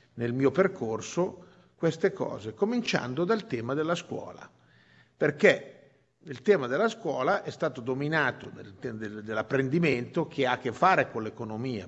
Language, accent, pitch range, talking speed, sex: Italian, native, 130-185 Hz, 140 wpm, male